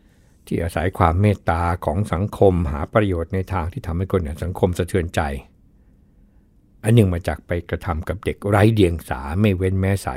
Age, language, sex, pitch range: 60-79, Thai, male, 85-105 Hz